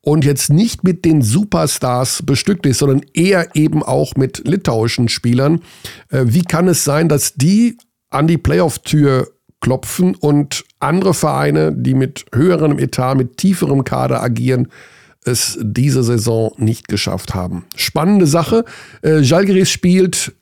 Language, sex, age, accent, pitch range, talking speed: German, male, 50-69, German, 110-165 Hz, 135 wpm